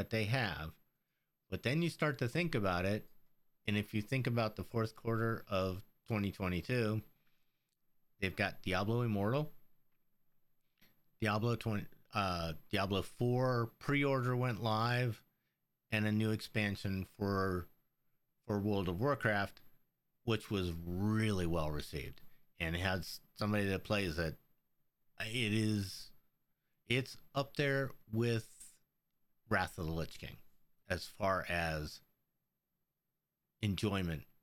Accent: American